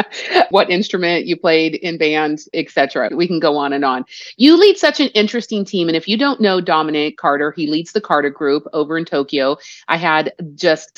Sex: female